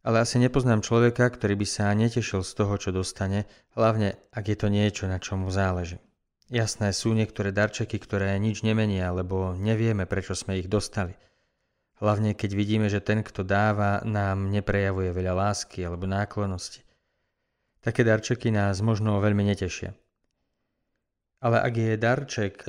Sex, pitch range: male, 100-120 Hz